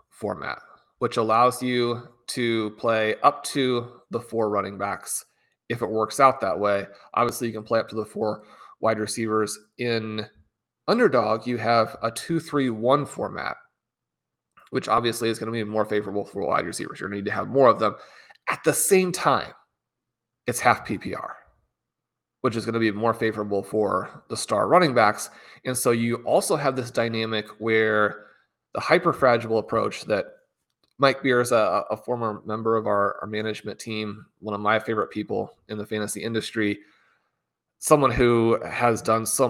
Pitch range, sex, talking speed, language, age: 105-120 Hz, male, 170 wpm, English, 30-49